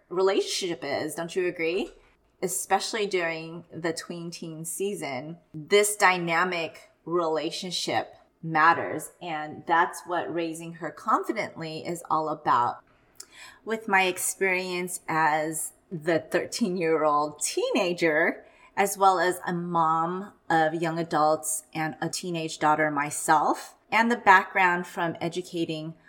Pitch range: 160-185 Hz